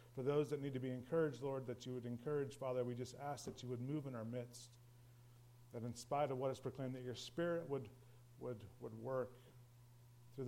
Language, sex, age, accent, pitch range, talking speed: English, male, 40-59, American, 120-155 Hz, 220 wpm